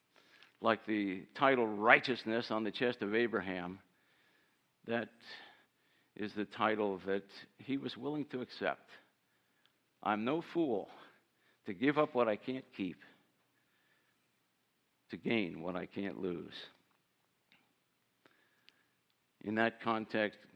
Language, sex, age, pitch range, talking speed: English, male, 60-79, 105-130 Hz, 110 wpm